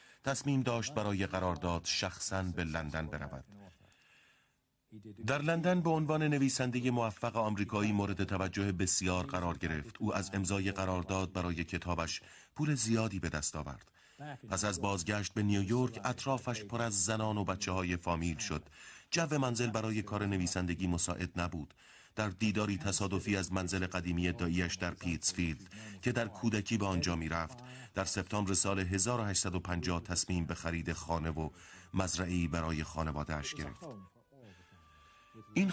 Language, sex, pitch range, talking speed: Persian, male, 85-110 Hz, 140 wpm